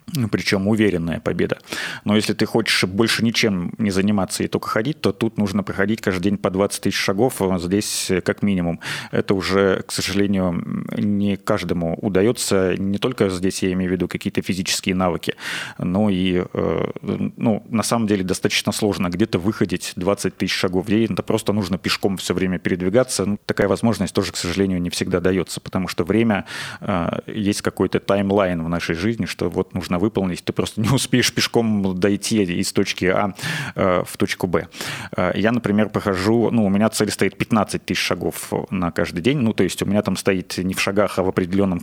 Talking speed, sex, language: 180 wpm, male, Russian